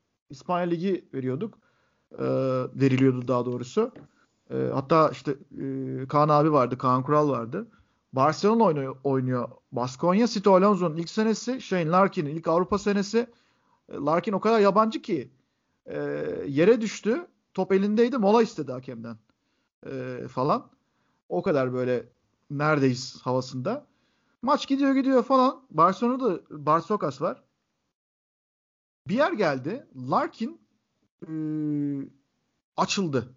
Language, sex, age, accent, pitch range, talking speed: Turkish, male, 50-69, native, 145-225 Hz, 110 wpm